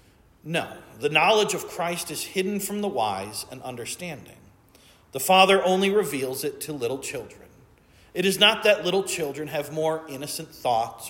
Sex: male